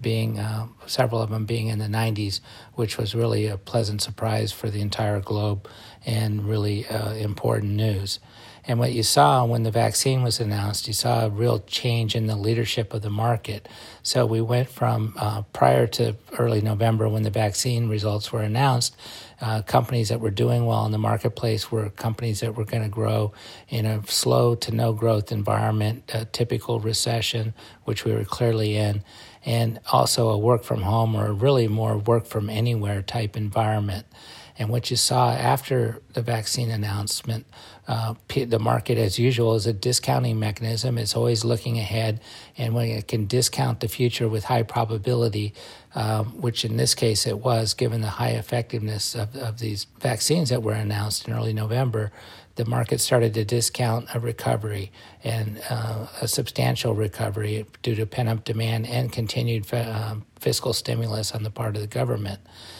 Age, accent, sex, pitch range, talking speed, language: 40-59, American, male, 110-120 Hz, 175 wpm, English